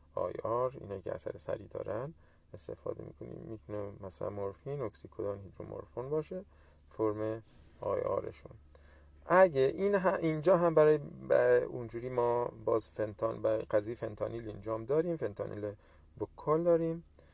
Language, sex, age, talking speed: Persian, male, 30-49, 120 wpm